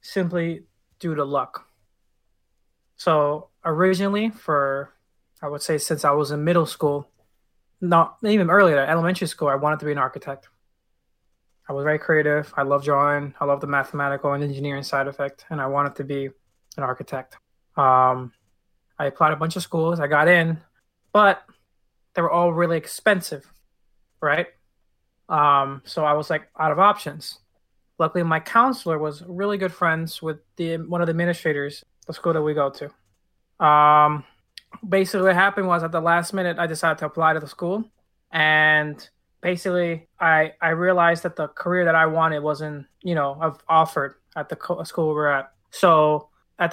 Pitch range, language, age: 140-170 Hz, English, 20-39